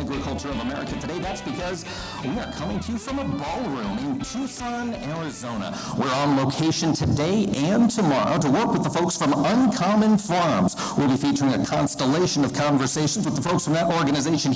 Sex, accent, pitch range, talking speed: male, American, 130-200 Hz, 180 wpm